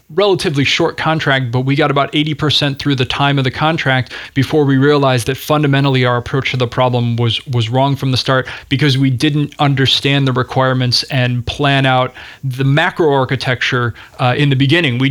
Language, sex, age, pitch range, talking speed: English, male, 20-39, 130-150 Hz, 190 wpm